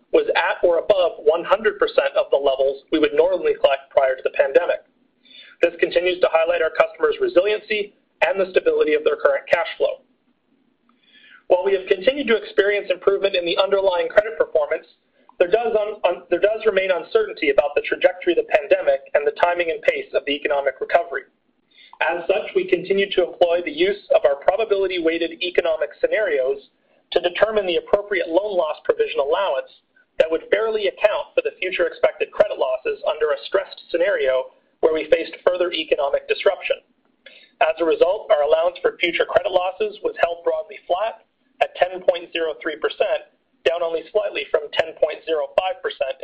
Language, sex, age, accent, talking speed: English, male, 40-59, American, 160 wpm